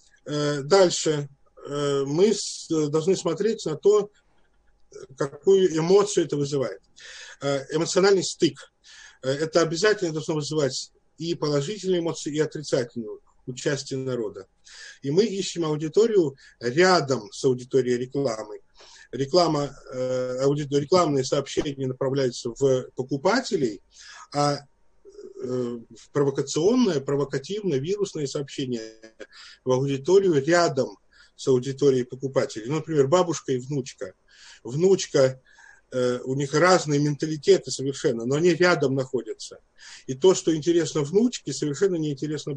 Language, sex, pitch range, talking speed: Russian, male, 135-180 Hz, 105 wpm